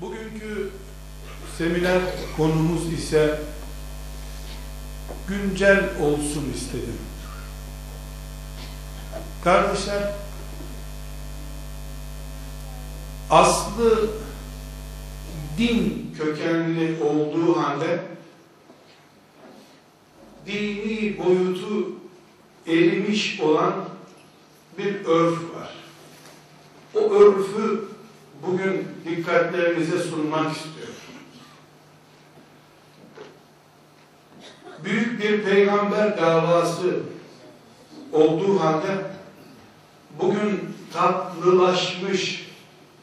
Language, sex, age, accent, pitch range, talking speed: Turkish, male, 60-79, native, 160-195 Hz, 45 wpm